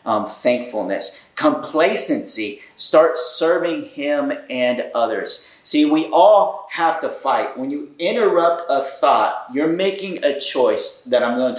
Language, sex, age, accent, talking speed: English, male, 30-49, American, 135 wpm